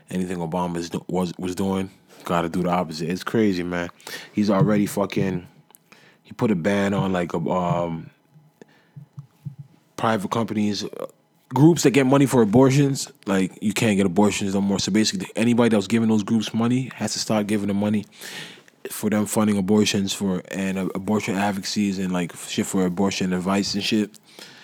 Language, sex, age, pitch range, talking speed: English, male, 20-39, 95-130 Hz, 170 wpm